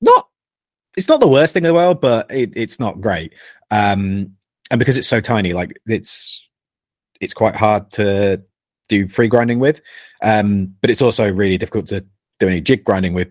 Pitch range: 95-115 Hz